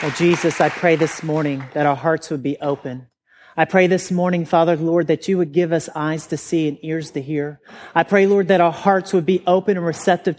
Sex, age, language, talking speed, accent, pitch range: male, 40-59, English, 235 wpm, American, 150-175 Hz